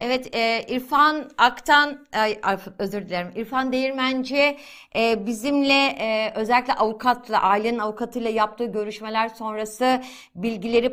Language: Turkish